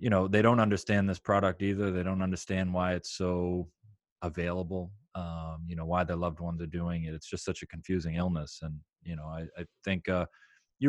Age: 30-49